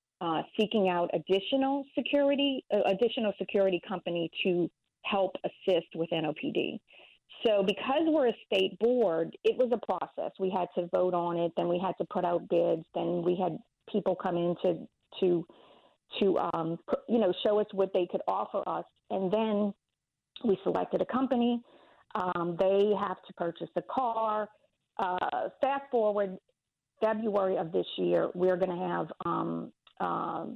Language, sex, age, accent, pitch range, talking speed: English, female, 40-59, American, 175-215 Hz, 165 wpm